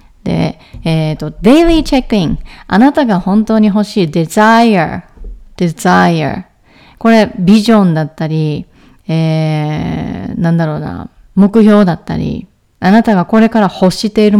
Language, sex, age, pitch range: Japanese, female, 30-49, 165-220 Hz